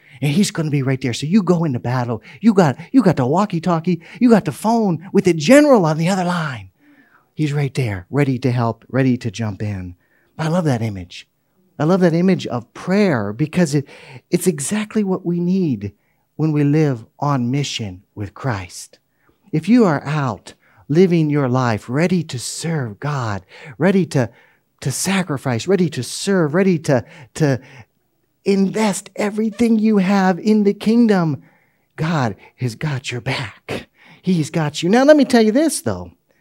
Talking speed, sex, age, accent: 175 wpm, male, 40-59, American